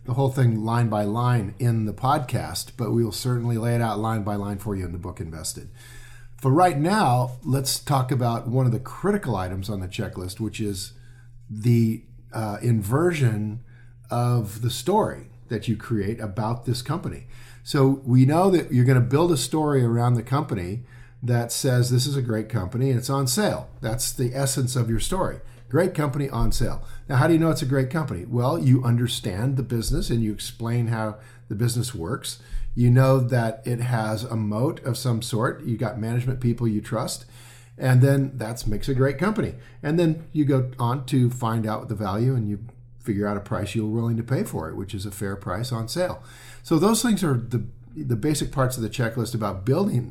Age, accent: 50-69, American